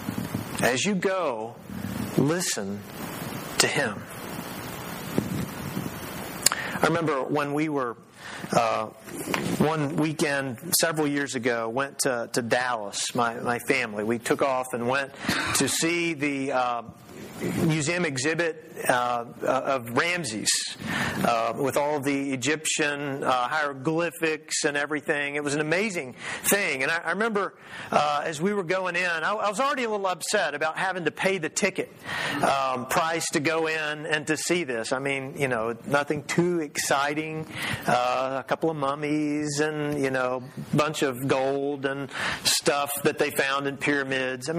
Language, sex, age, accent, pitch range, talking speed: English, male, 40-59, American, 135-165 Hz, 145 wpm